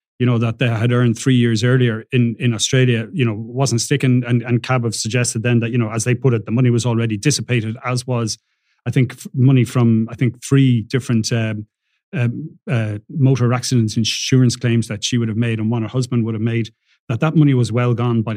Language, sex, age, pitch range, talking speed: English, male, 30-49, 115-130 Hz, 230 wpm